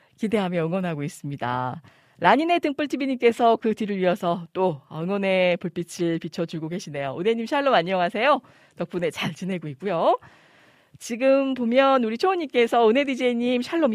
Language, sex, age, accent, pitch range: Korean, female, 40-59, native, 165-245 Hz